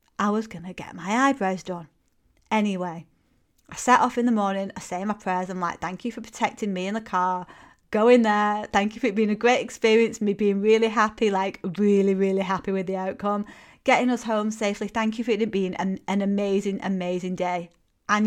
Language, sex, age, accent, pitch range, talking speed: English, female, 30-49, British, 190-225 Hz, 215 wpm